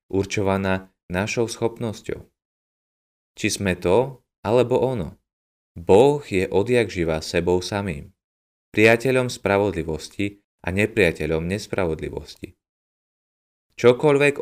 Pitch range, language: 85-115 Hz, Slovak